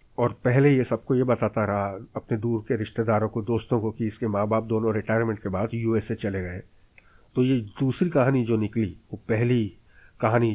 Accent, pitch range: native, 110-130 Hz